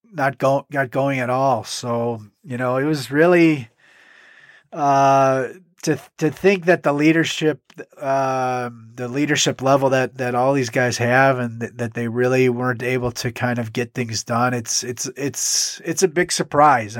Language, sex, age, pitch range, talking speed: English, male, 30-49, 125-150 Hz, 175 wpm